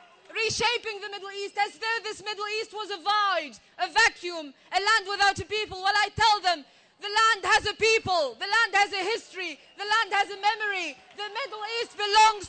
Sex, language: female, English